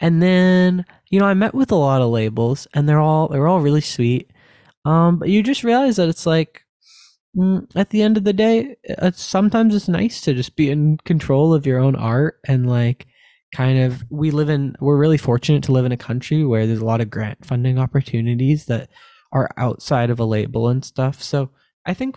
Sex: male